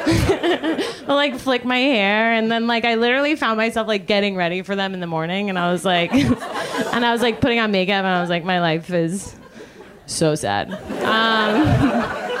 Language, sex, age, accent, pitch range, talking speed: English, female, 20-39, American, 190-255 Hz, 195 wpm